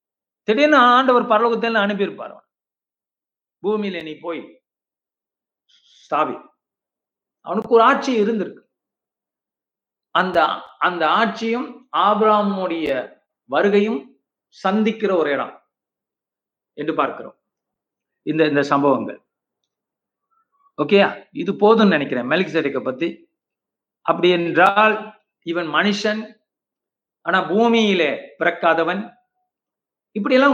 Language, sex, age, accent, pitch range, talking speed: Tamil, male, 50-69, native, 175-230 Hz, 70 wpm